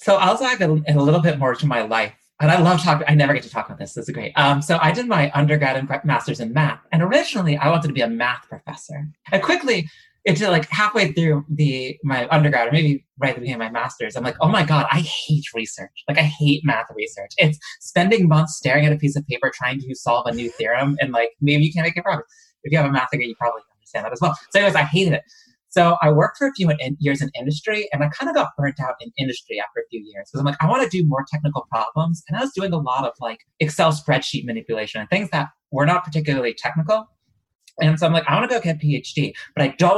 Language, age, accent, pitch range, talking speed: English, 30-49, American, 135-165 Hz, 270 wpm